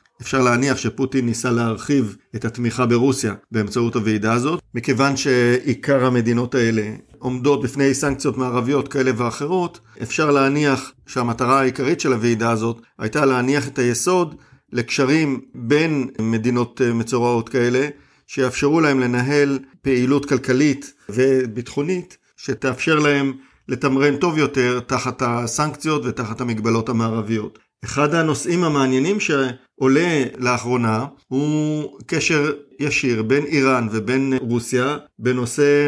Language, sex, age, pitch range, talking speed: Hebrew, male, 50-69, 120-140 Hz, 110 wpm